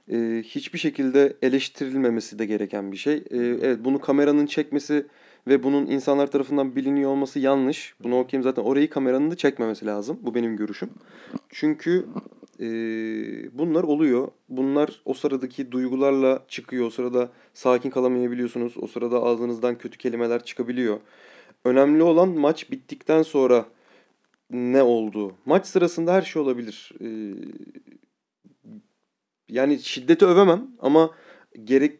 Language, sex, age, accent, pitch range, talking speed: Turkish, male, 30-49, native, 120-160 Hz, 120 wpm